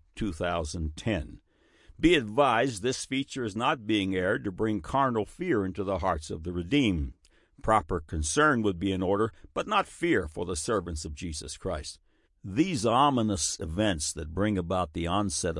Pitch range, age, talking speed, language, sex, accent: 80-110 Hz, 60-79, 160 wpm, English, male, American